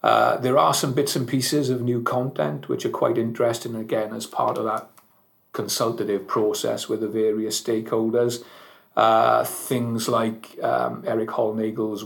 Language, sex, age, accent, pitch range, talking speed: English, male, 40-59, British, 110-120 Hz, 155 wpm